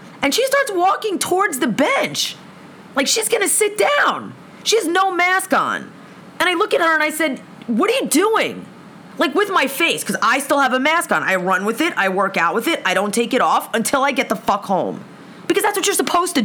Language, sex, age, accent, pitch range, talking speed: English, female, 30-49, American, 235-345 Hz, 245 wpm